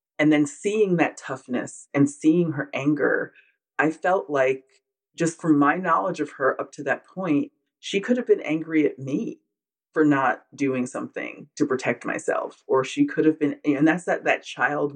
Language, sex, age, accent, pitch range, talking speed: English, female, 30-49, American, 135-175 Hz, 185 wpm